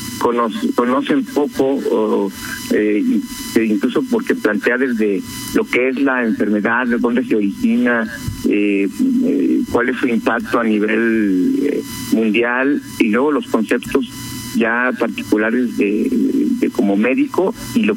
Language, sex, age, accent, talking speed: Spanish, male, 50-69, Mexican, 130 wpm